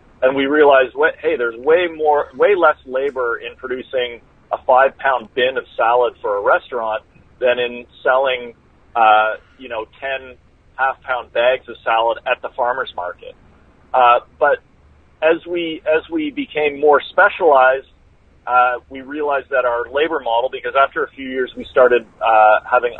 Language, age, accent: English, 40-59, American